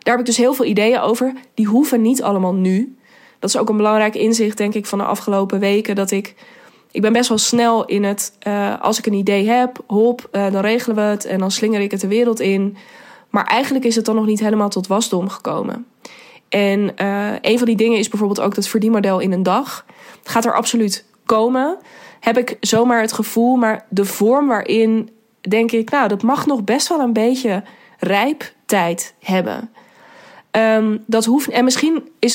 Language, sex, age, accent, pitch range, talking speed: Dutch, female, 20-39, Dutch, 205-240 Hz, 205 wpm